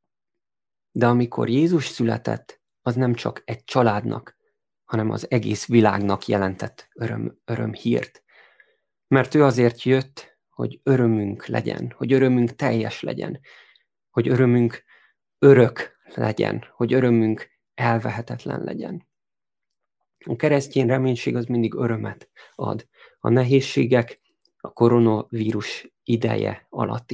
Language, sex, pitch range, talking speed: Hungarian, male, 115-130 Hz, 105 wpm